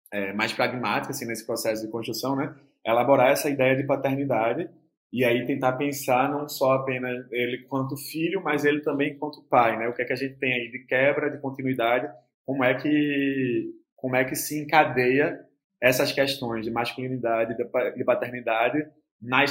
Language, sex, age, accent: Portuguese, male, 20-39, Brazilian